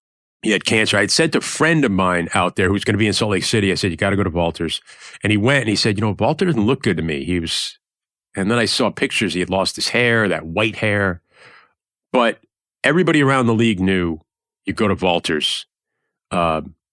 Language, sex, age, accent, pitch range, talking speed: English, male, 40-59, American, 95-120 Hz, 250 wpm